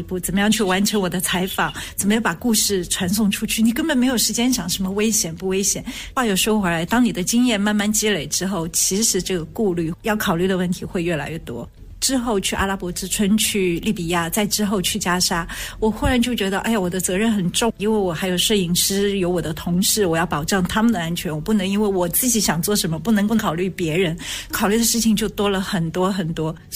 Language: Chinese